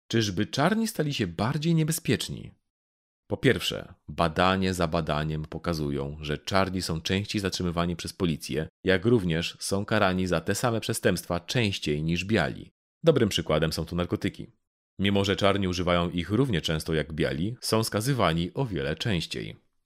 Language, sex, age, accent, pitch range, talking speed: Polish, male, 30-49, native, 85-115 Hz, 150 wpm